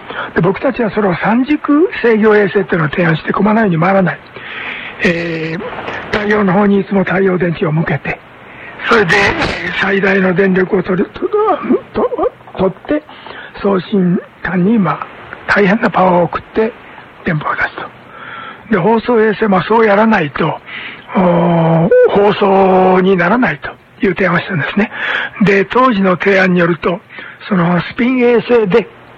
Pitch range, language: 185-220 Hz, Korean